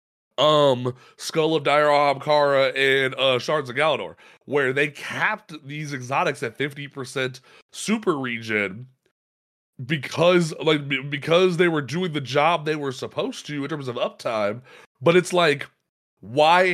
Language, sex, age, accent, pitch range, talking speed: English, male, 30-49, American, 125-155 Hz, 135 wpm